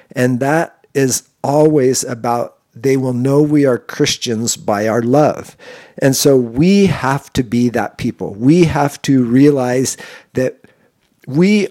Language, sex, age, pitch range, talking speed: English, male, 50-69, 120-145 Hz, 145 wpm